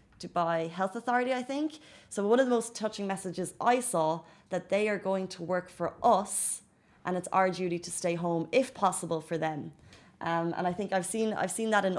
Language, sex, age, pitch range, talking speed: Arabic, female, 20-39, 165-190 Hz, 210 wpm